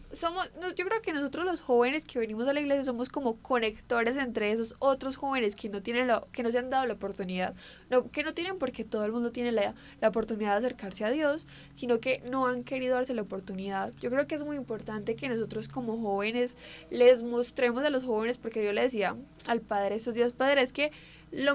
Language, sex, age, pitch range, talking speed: Spanish, female, 10-29, 215-265 Hz, 225 wpm